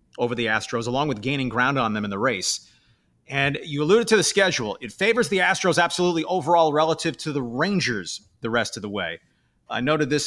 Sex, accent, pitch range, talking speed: male, American, 130-195 Hz, 210 wpm